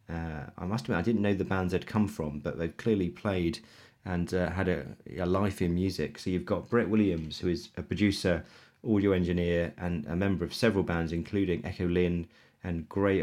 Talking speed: 210 wpm